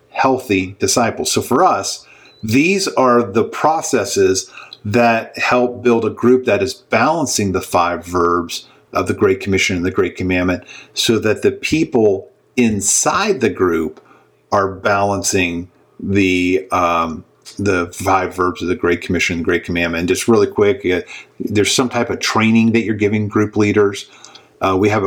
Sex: male